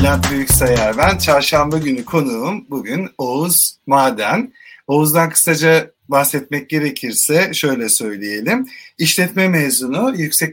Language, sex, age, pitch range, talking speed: Turkish, male, 50-69, 130-185 Hz, 105 wpm